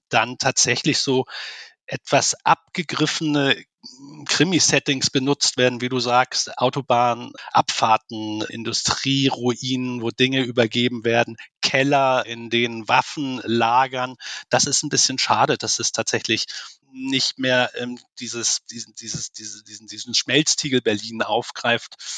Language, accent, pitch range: German, German, 120-140 Hz